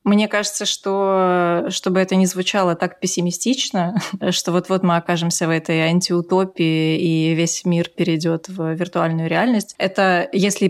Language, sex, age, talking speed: Russian, female, 20-39, 140 wpm